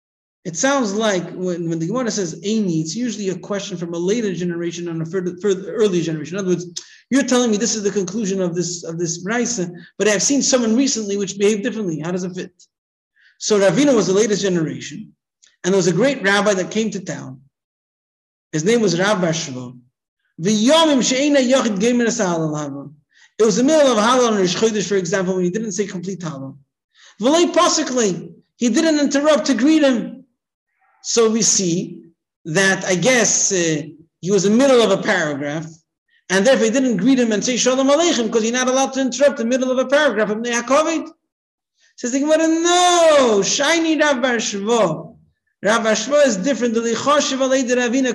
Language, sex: English, male